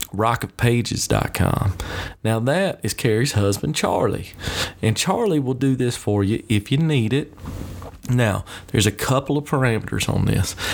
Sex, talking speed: male, 145 wpm